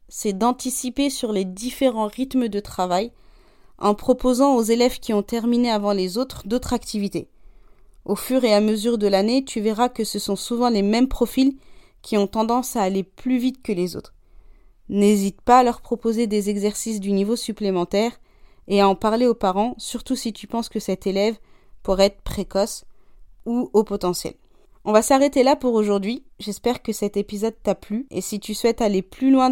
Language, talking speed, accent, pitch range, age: French, 190 wpm, French, 200-245 Hz, 30-49